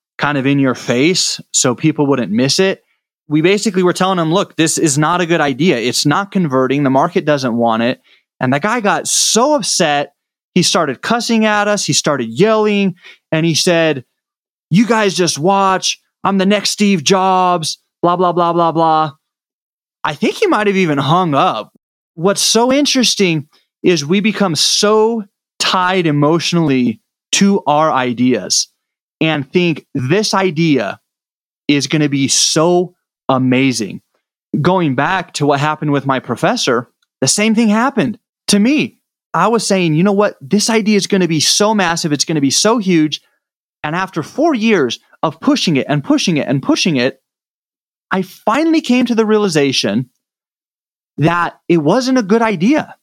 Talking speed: 170 wpm